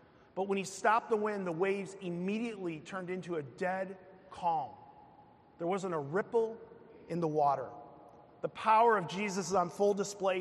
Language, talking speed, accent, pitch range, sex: English, 165 wpm, American, 180-215 Hz, male